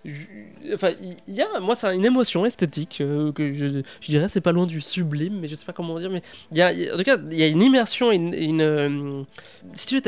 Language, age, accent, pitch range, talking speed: French, 20-39, French, 145-180 Hz, 250 wpm